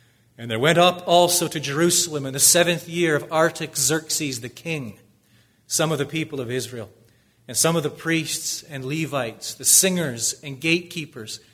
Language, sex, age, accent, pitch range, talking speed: English, male, 40-59, American, 120-155 Hz, 165 wpm